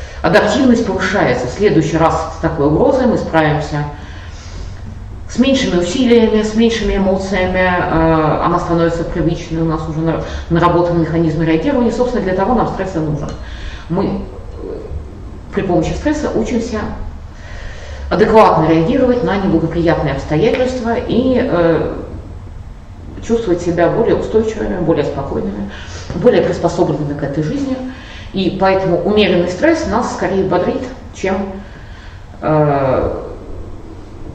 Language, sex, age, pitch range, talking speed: Russian, female, 30-49, 130-200 Hz, 110 wpm